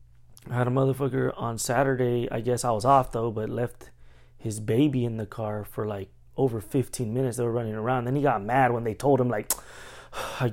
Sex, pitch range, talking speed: male, 110-145 Hz, 215 wpm